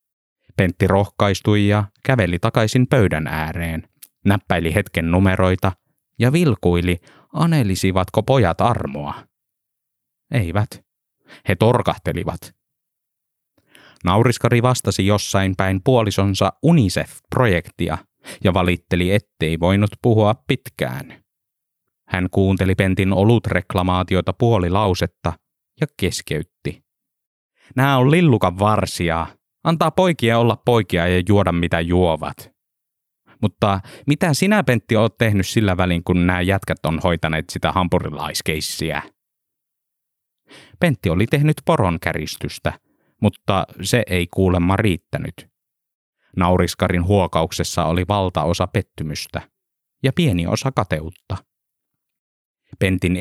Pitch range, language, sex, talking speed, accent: 90-115 Hz, Finnish, male, 95 wpm, native